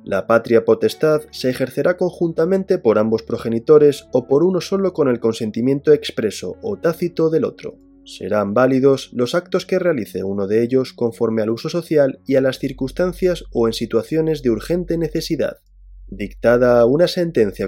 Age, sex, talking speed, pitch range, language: 20-39, male, 160 wpm, 110-160 Hz, Spanish